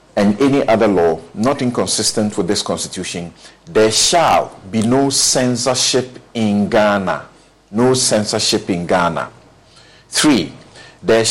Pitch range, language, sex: 105-135 Hz, English, male